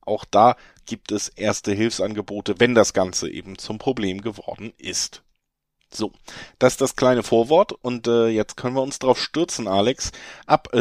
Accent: German